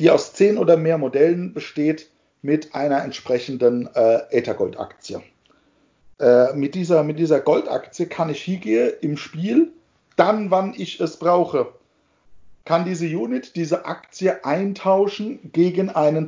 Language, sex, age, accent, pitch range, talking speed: German, male, 50-69, German, 145-185 Hz, 135 wpm